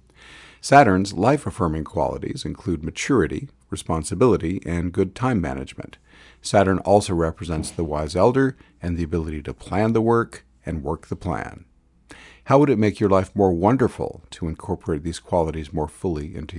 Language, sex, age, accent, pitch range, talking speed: English, male, 50-69, American, 80-100 Hz, 150 wpm